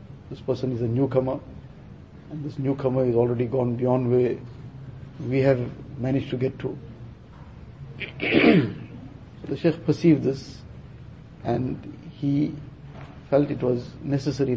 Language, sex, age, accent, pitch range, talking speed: English, male, 60-79, Indian, 130-145 Hz, 125 wpm